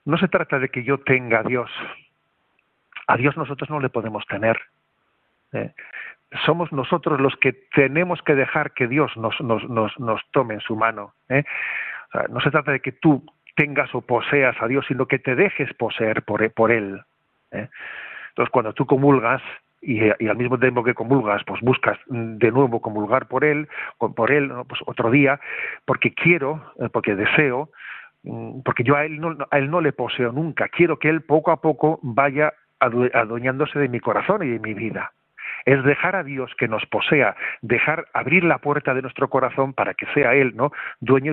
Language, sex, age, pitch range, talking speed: Spanish, male, 40-59, 120-150 Hz, 185 wpm